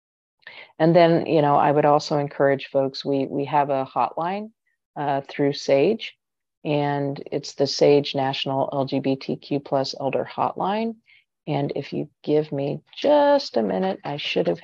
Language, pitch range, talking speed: English, 135-155 Hz, 150 wpm